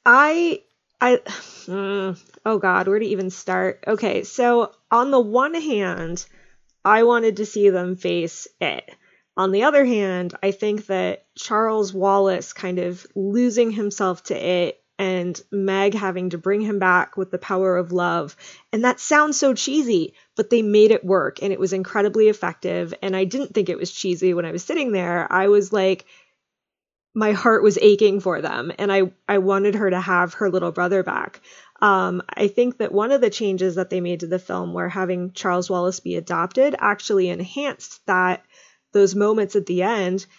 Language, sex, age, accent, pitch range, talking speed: English, female, 20-39, American, 185-225 Hz, 185 wpm